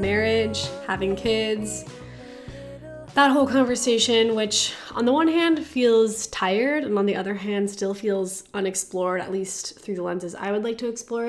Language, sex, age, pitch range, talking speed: English, female, 20-39, 190-225 Hz, 165 wpm